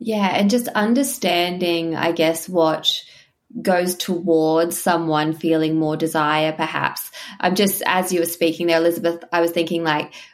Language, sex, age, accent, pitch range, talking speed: English, female, 20-39, Australian, 165-210 Hz, 150 wpm